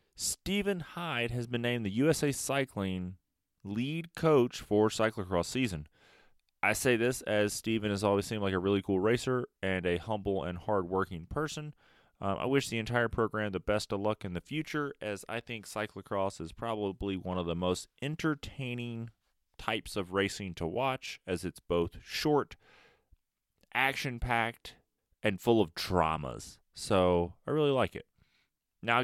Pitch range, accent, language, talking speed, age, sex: 95-120 Hz, American, English, 155 wpm, 30-49, male